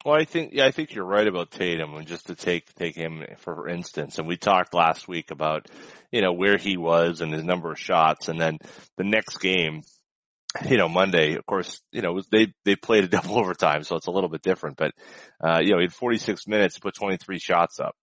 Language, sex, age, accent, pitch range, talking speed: English, male, 30-49, American, 85-115 Hz, 240 wpm